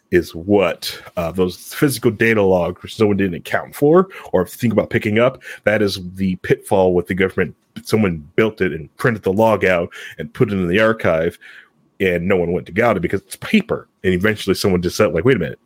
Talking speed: 220 wpm